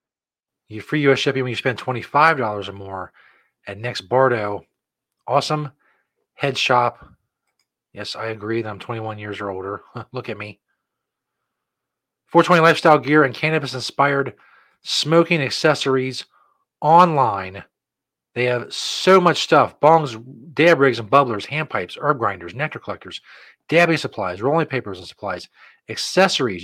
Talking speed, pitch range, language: 130 wpm, 110-150 Hz, English